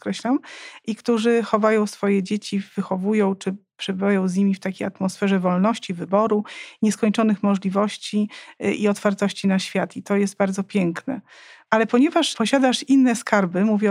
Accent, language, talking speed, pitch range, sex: native, Polish, 140 wpm, 195-245 Hz, female